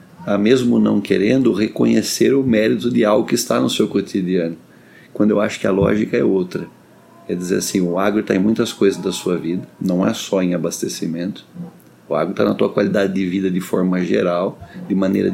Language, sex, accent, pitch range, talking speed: Portuguese, male, Brazilian, 95-110 Hz, 200 wpm